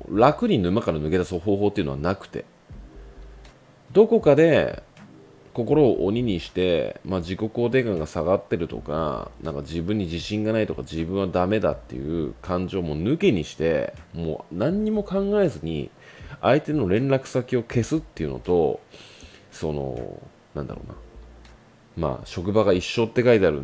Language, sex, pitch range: Japanese, male, 75-120 Hz